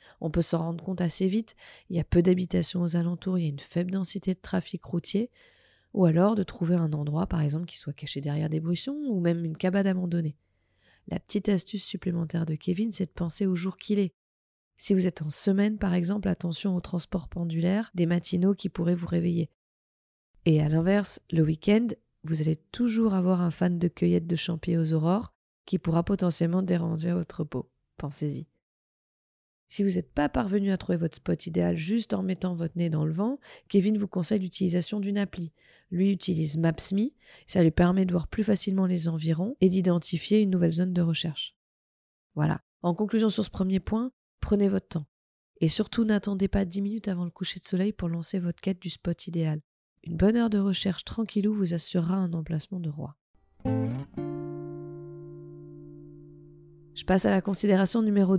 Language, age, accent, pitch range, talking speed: French, 20-39, French, 160-195 Hz, 190 wpm